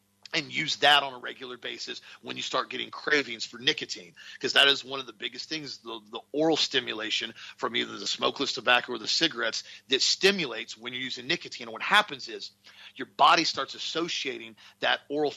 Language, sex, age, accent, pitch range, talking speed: English, male, 40-59, American, 125-155 Hz, 195 wpm